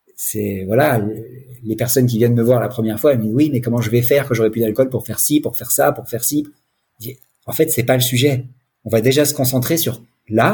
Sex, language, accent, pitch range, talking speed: male, French, French, 125-185 Hz, 270 wpm